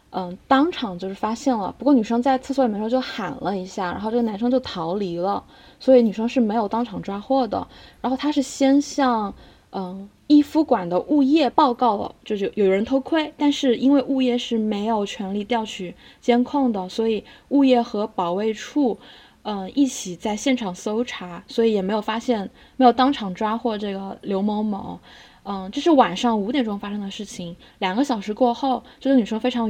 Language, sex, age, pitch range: Chinese, female, 20-39, 210-265 Hz